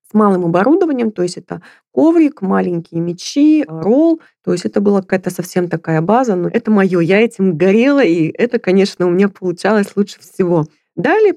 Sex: female